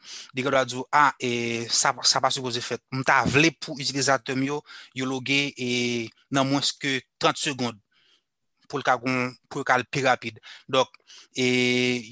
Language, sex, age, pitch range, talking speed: French, male, 30-49, 125-150 Hz, 165 wpm